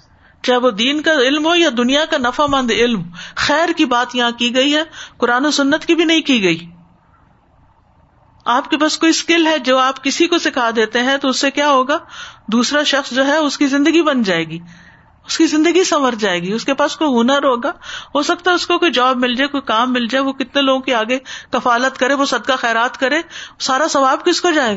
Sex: female